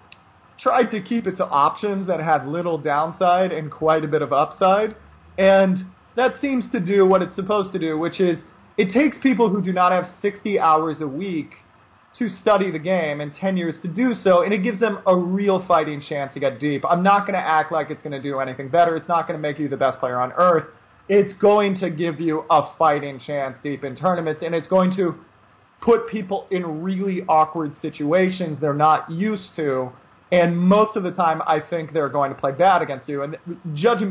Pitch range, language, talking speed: 145-190 Hz, English, 220 wpm